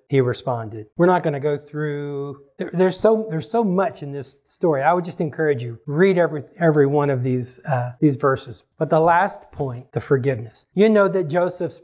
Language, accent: English, American